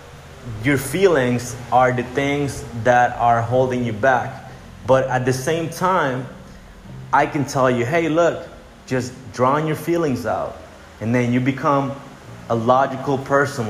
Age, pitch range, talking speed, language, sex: 30-49, 110-145 Hz, 145 wpm, English, male